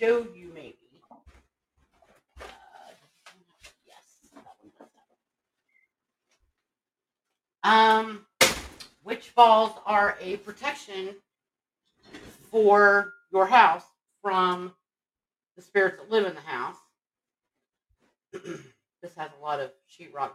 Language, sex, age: English, female, 40-59